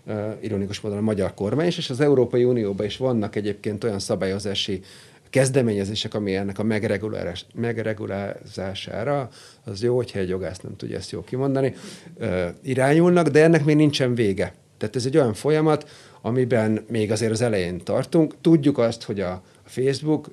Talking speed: 160 wpm